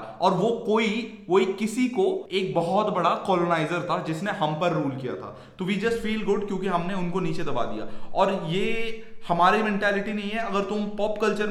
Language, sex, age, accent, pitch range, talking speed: Hindi, male, 20-39, native, 185-220 Hz, 200 wpm